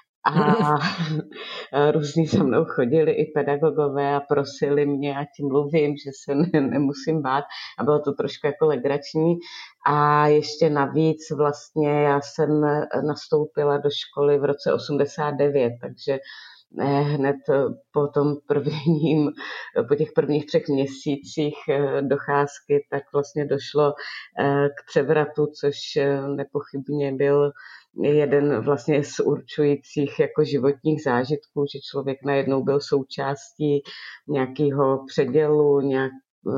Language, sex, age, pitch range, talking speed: Czech, female, 30-49, 140-150 Hz, 115 wpm